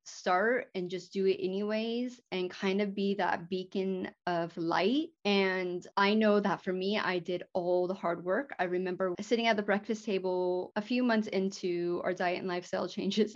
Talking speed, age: 190 wpm, 20-39